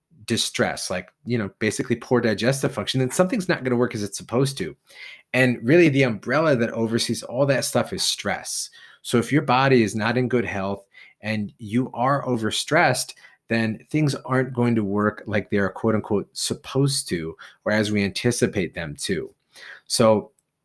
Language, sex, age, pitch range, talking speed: English, male, 30-49, 105-125 Hz, 175 wpm